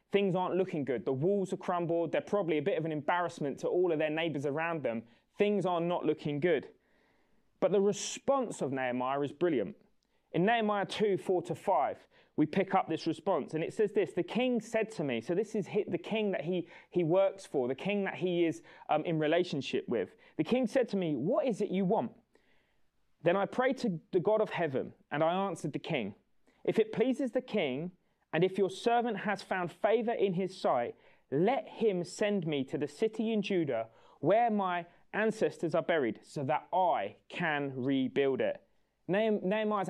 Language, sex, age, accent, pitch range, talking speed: English, male, 20-39, British, 170-215 Hz, 200 wpm